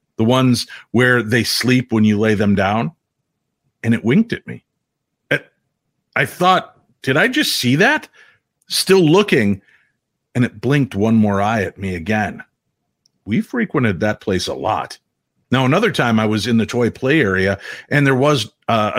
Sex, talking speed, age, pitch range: male, 170 wpm, 50-69, 105-145 Hz